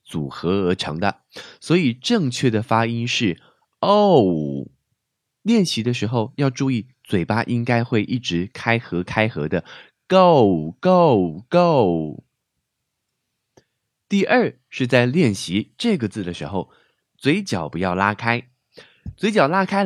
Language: Chinese